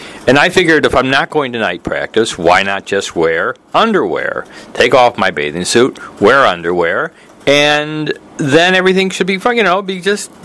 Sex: male